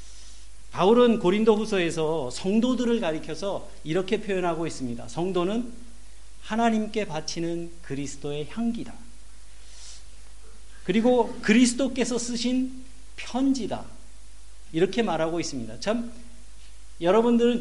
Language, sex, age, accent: Korean, male, 40-59, native